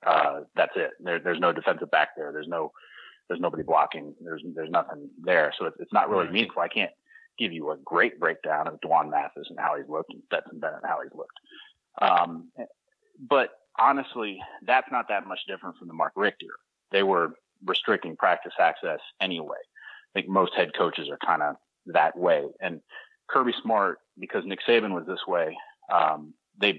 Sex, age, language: male, 30-49, English